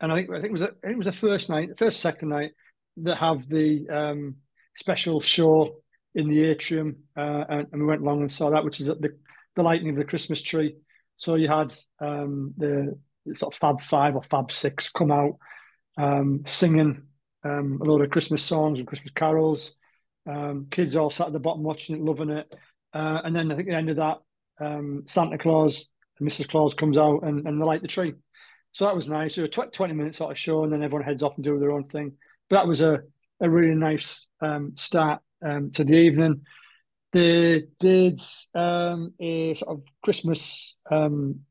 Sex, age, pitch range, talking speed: male, 30-49, 150-165 Hz, 215 wpm